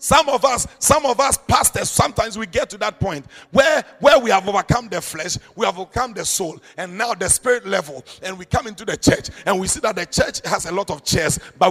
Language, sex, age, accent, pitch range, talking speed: English, male, 50-69, Nigerian, 195-270 Hz, 245 wpm